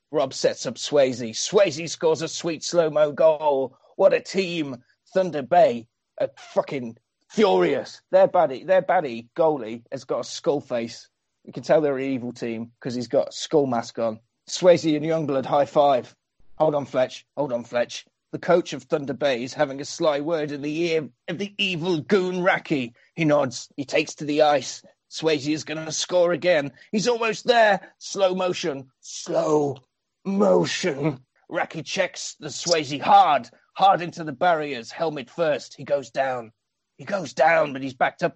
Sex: male